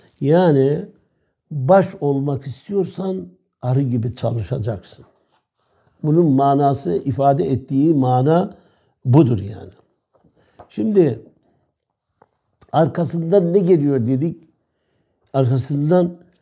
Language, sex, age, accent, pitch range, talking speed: Turkish, male, 60-79, native, 125-165 Hz, 75 wpm